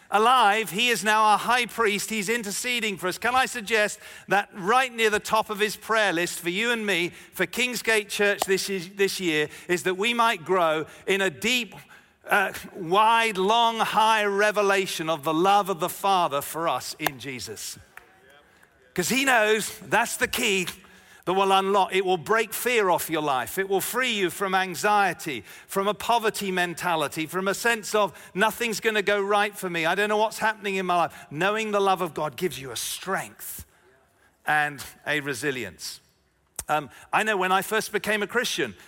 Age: 50-69